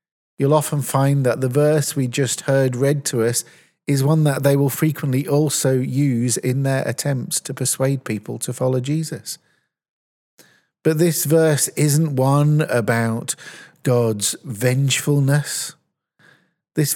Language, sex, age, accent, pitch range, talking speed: English, male, 40-59, British, 130-155 Hz, 135 wpm